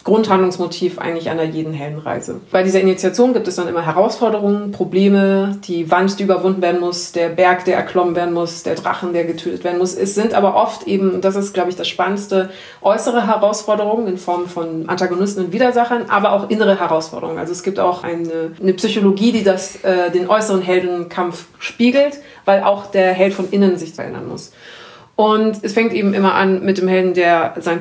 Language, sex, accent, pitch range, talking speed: German, female, German, 175-205 Hz, 195 wpm